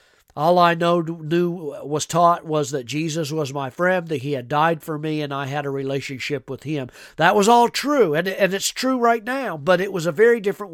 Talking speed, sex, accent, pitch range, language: 225 wpm, male, American, 135-165 Hz, English